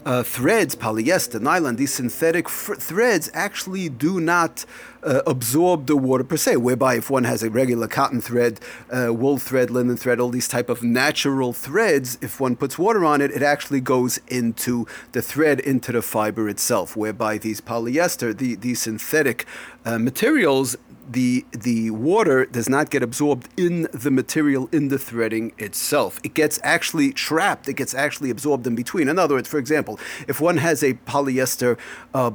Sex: male